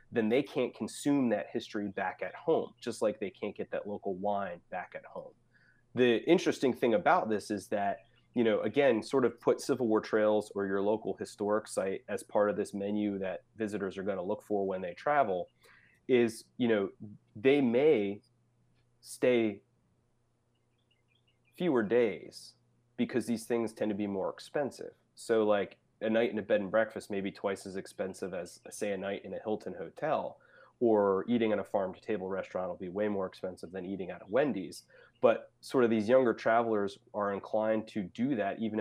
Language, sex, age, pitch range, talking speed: English, male, 30-49, 100-120 Hz, 190 wpm